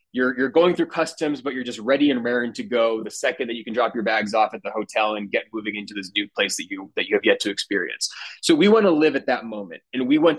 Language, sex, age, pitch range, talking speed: English, male, 20-39, 125-150 Hz, 295 wpm